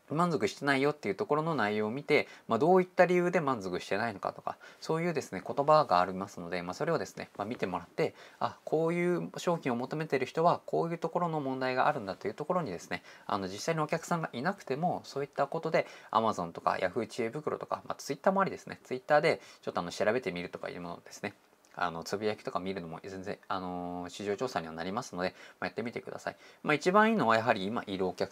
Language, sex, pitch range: Japanese, male, 100-165 Hz